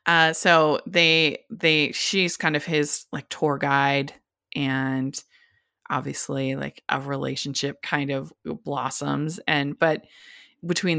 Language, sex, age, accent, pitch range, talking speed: English, female, 20-39, American, 140-180 Hz, 120 wpm